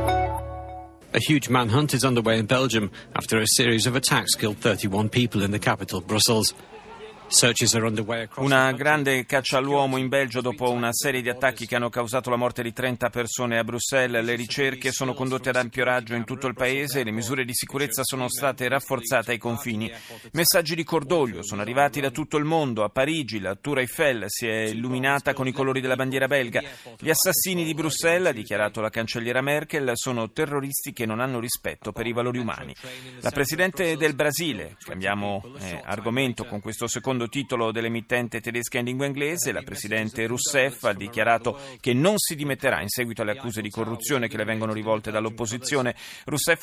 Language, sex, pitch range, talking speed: Italian, male, 115-140 Hz, 180 wpm